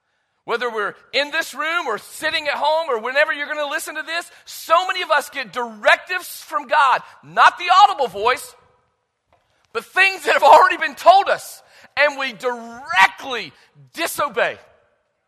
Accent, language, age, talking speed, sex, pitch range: American, English, 40-59, 160 wpm, male, 185-290 Hz